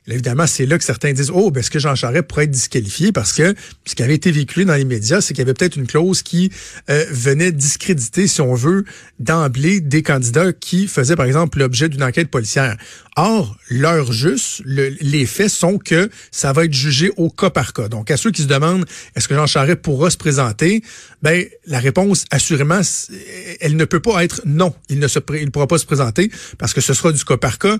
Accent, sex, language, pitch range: Canadian, male, French, 135-170 Hz